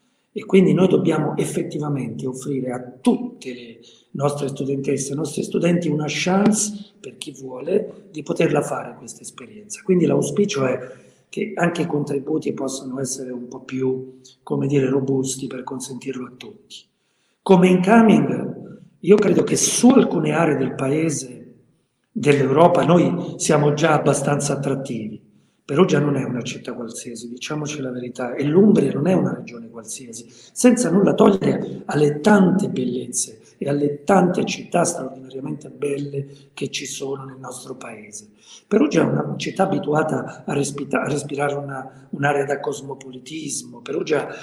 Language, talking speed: Italian, 140 wpm